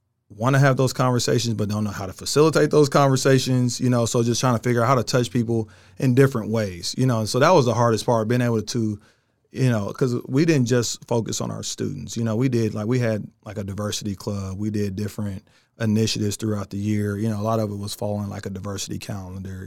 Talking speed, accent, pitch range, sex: 240 wpm, American, 105-120 Hz, male